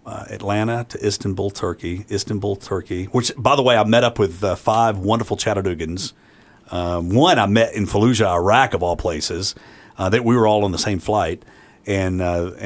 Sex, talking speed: male, 190 wpm